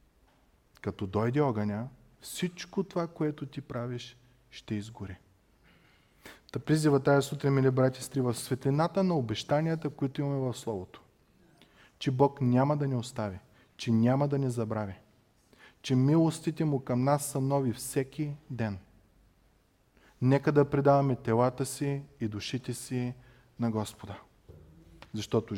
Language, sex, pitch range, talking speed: Bulgarian, male, 115-145 Hz, 130 wpm